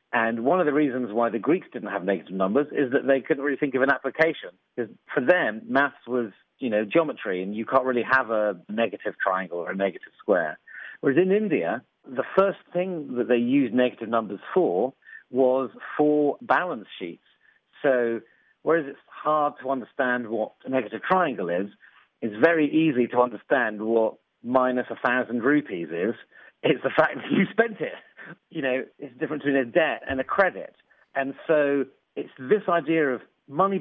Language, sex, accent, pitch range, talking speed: English, male, British, 120-150 Hz, 180 wpm